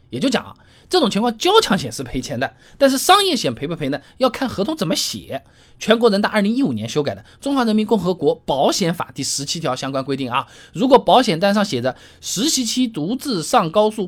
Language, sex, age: Chinese, male, 20-39